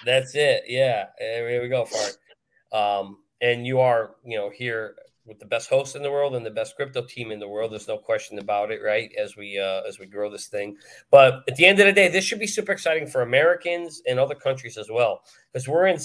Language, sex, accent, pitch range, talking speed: English, male, American, 120-195 Hz, 245 wpm